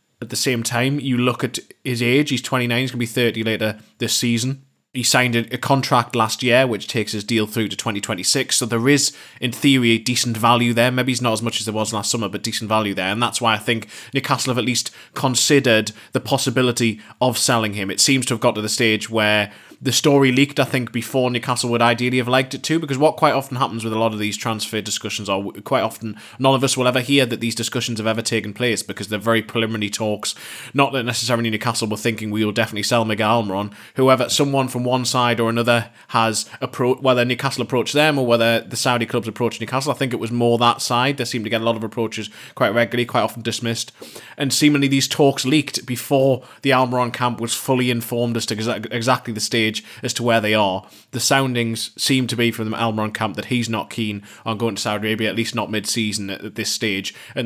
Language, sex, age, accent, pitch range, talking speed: English, male, 20-39, British, 110-125 Hz, 240 wpm